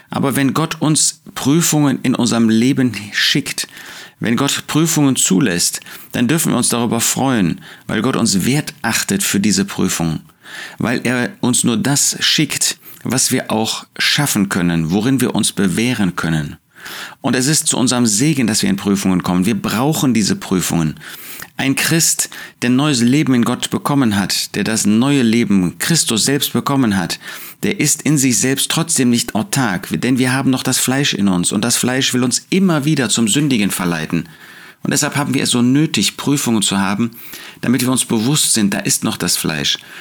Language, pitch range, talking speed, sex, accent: German, 105-140 Hz, 180 wpm, male, German